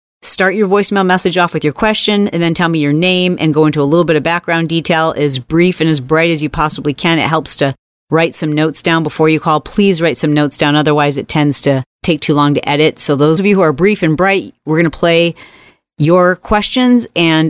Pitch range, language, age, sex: 155-180 Hz, English, 40-59, female